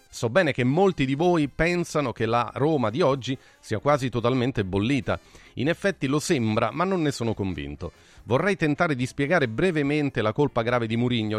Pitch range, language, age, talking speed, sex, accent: 115-155 Hz, Italian, 40-59, 185 wpm, male, native